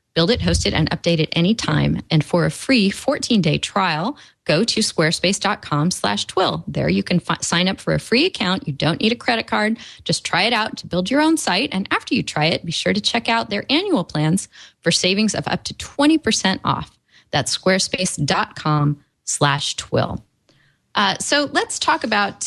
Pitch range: 155-200 Hz